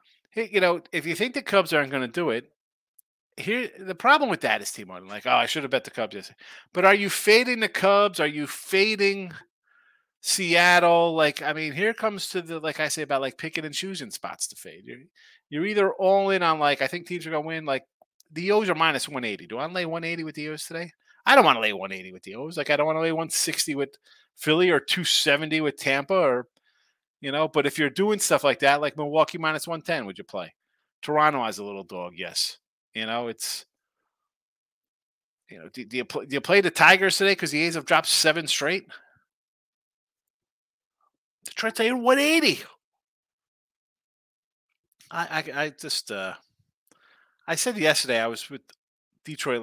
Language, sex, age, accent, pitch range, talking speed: English, male, 30-49, American, 145-195 Hz, 205 wpm